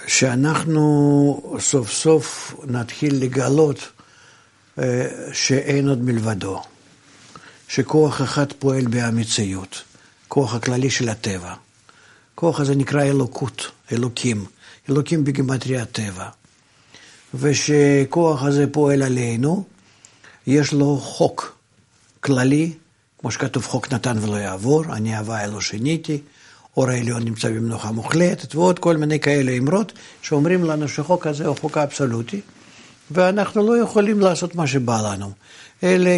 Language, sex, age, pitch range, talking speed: Hebrew, male, 60-79, 120-155 Hz, 110 wpm